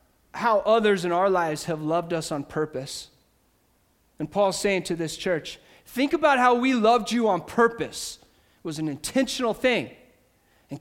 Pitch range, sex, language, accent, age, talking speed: 170-230 Hz, male, English, American, 30-49, 165 wpm